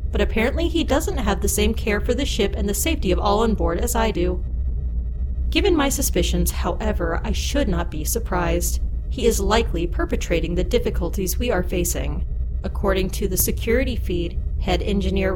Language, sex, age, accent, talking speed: English, female, 30-49, American, 180 wpm